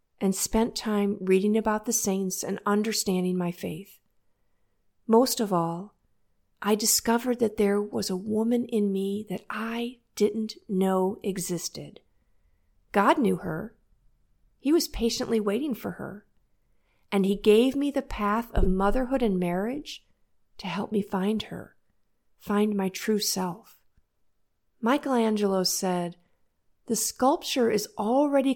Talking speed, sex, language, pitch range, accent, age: 130 wpm, female, English, 190-230 Hz, American, 50-69